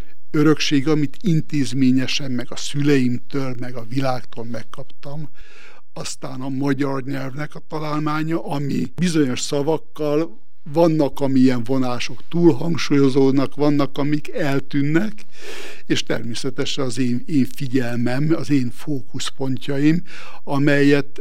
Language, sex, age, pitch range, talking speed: Hungarian, male, 60-79, 125-150 Hz, 105 wpm